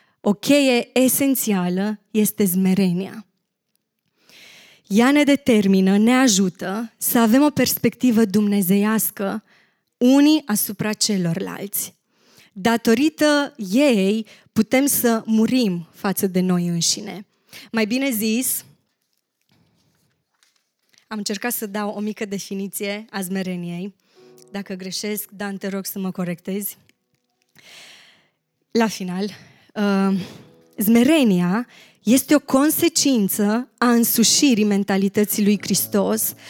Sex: female